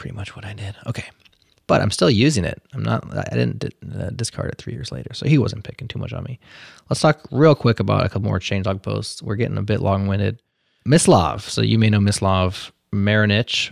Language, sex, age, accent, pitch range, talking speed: English, male, 20-39, American, 100-115 Hz, 230 wpm